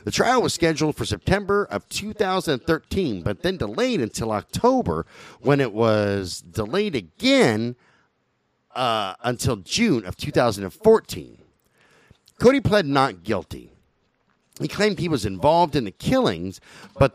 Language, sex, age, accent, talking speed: English, male, 50-69, American, 125 wpm